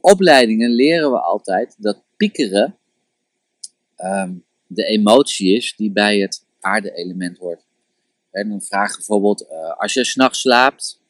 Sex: male